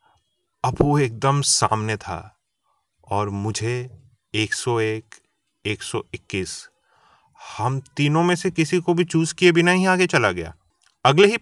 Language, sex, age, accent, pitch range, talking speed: Hindi, male, 30-49, native, 125-170 Hz, 130 wpm